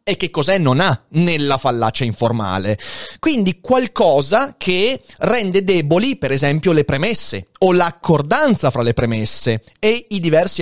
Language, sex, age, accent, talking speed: Italian, male, 30-49, native, 140 wpm